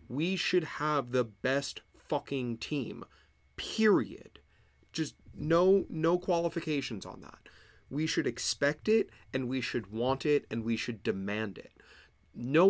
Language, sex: English, male